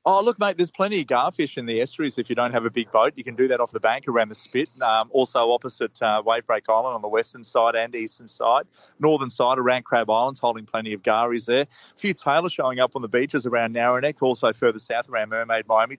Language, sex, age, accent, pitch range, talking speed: English, male, 30-49, Australian, 115-140 Hz, 250 wpm